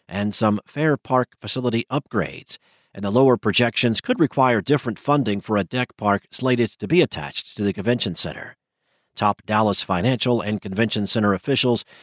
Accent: American